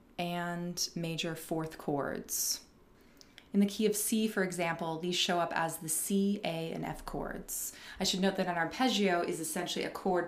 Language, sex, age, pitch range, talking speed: English, female, 20-39, 175-260 Hz, 180 wpm